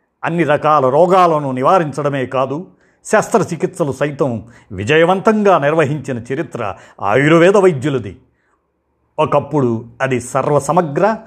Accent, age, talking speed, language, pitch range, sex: native, 50-69, 80 wpm, Telugu, 130-185 Hz, male